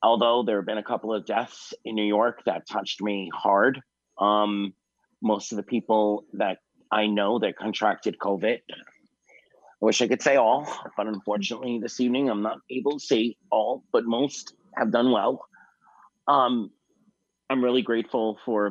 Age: 30-49